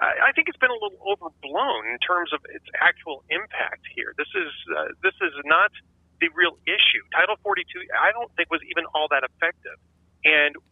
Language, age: English, 40-59